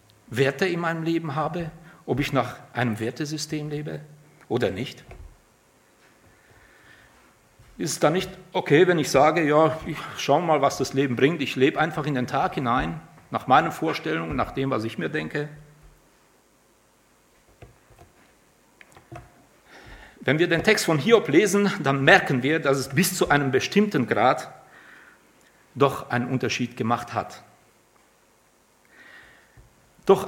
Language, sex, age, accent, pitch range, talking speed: German, male, 50-69, German, 120-160 Hz, 135 wpm